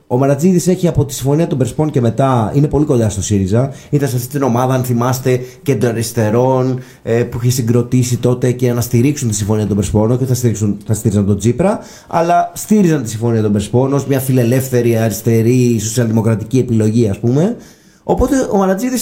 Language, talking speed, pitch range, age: Greek, 190 wpm, 115-160 Hz, 30-49